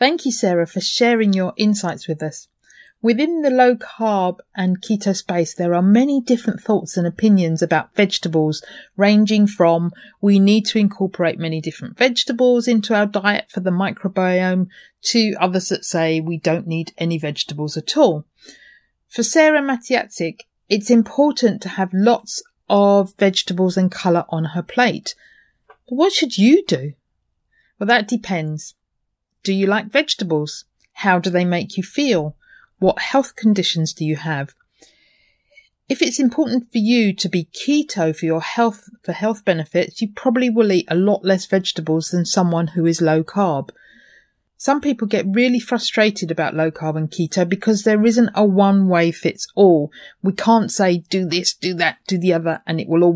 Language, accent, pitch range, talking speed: English, British, 170-230 Hz, 170 wpm